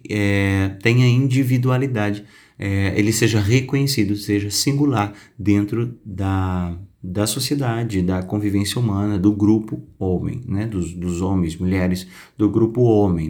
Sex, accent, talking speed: male, Brazilian, 120 wpm